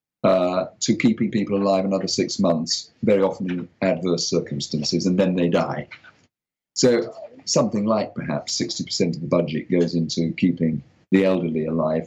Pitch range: 85-125 Hz